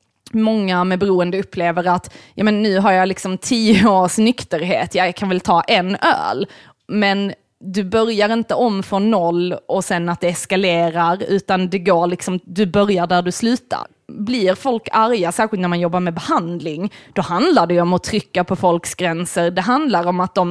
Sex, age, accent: female, 20-39, native